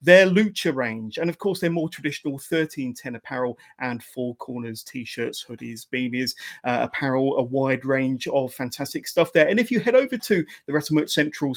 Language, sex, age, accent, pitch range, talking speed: English, male, 30-49, British, 135-190 Hz, 180 wpm